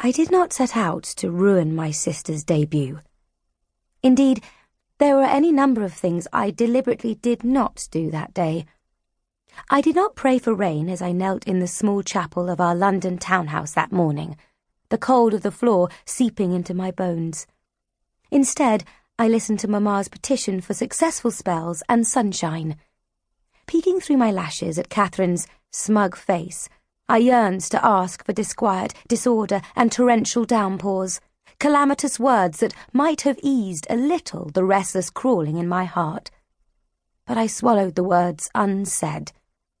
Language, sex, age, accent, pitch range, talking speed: English, female, 30-49, British, 175-240 Hz, 150 wpm